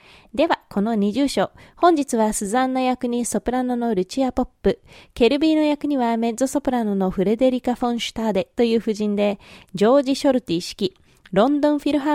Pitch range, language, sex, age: 205-260 Hz, Japanese, female, 20-39